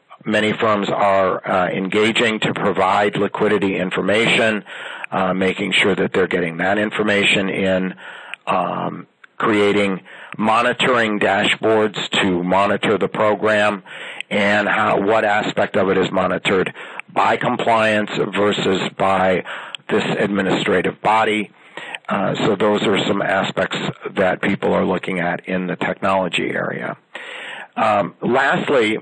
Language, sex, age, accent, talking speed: English, male, 50-69, American, 120 wpm